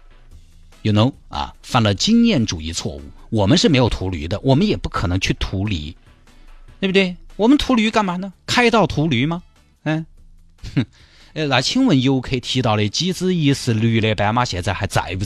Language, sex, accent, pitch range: Chinese, male, native, 90-140 Hz